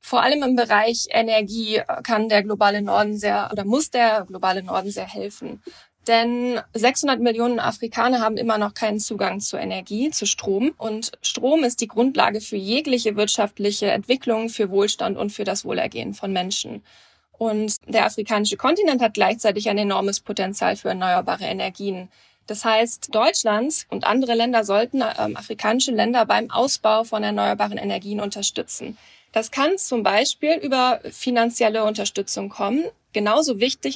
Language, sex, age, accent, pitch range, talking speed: German, female, 20-39, German, 205-240 Hz, 150 wpm